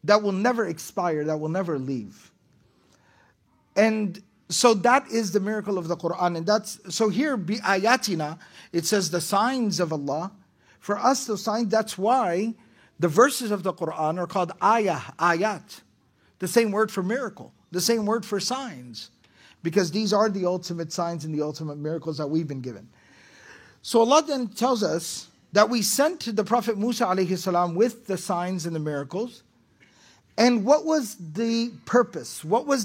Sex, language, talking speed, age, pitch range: male, English, 170 wpm, 50-69, 175-230 Hz